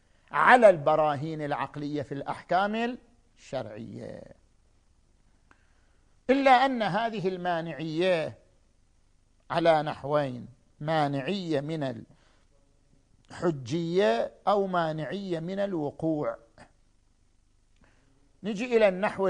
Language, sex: Arabic, male